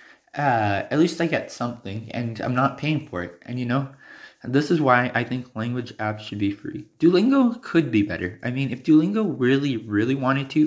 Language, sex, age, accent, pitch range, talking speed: English, male, 20-39, American, 105-135 Hz, 210 wpm